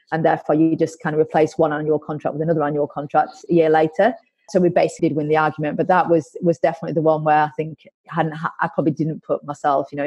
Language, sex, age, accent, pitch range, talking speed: English, female, 30-49, British, 150-175 Hz, 250 wpm